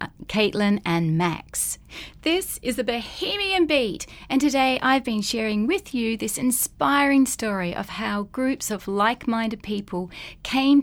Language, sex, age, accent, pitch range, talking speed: English, female, 30-49, Australian, 180-240 Hz, 140 wpm